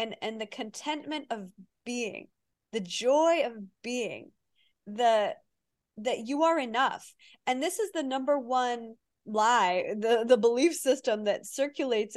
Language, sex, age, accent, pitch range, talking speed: English, female, 20-39, American, 215-265 Hz, 140 wpm